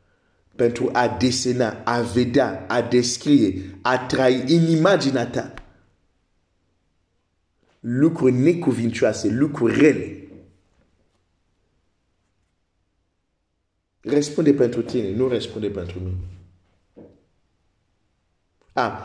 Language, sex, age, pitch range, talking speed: Romanian, male, 50-69, 95-135 Hz, 70 wpm